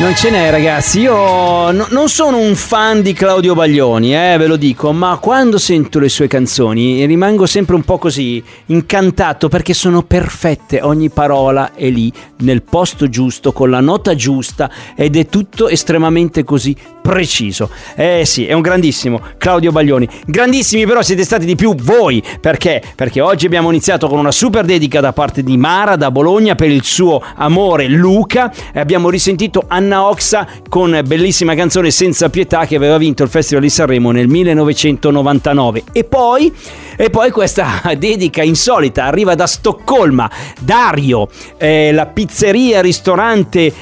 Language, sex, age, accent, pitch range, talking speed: Italian, male, 40-59, native, 145-205 Hz, 160 wpm